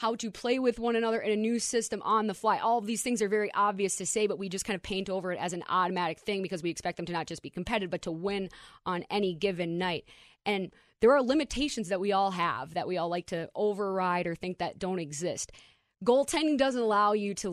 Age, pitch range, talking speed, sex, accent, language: 20-39, 190-235 Hz, 255 wpm, female, American, English